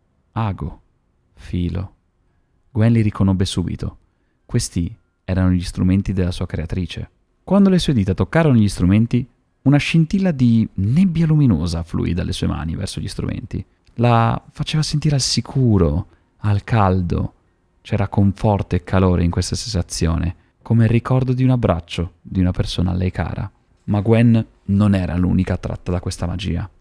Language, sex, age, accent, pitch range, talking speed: Italian, male, 30-49, native, 90-115 Hz, 150 wpm